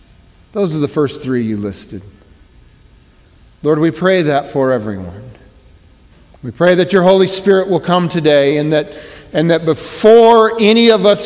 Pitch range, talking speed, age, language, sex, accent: 110-160 Hz, 160 wpm, 50-69, English, male, American